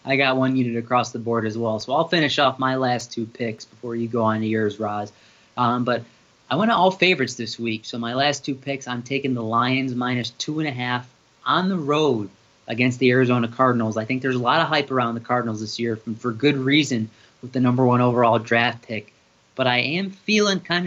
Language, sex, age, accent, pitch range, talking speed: English, male, 20-39, American, 120-140 Hz, 235 wpm